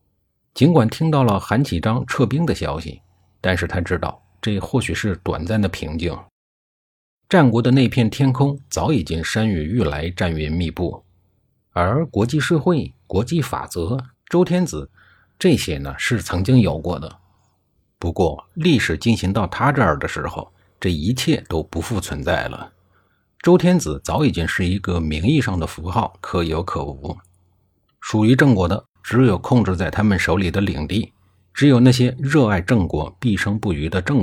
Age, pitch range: 50-69, 85-115 Hz